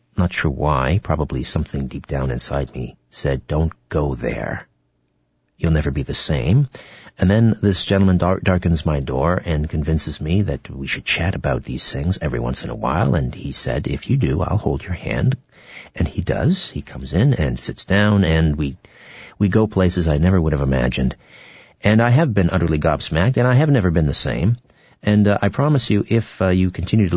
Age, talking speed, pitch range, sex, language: 50-69, 205 wpm, 75-105 Hz, male, English